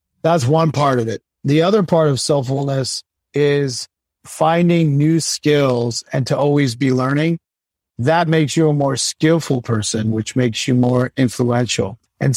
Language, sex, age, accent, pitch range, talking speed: English, male, 40-59, American, 125-150 Hz, 155 wpm